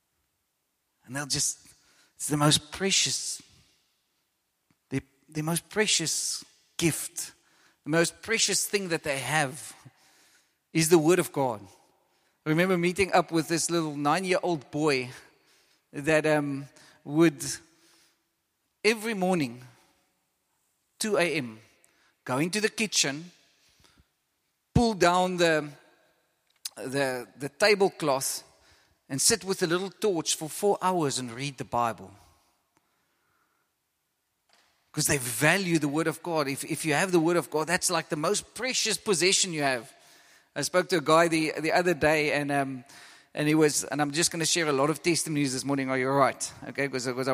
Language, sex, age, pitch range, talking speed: English, male, 40-59, 140-175 Hz, 150 wpm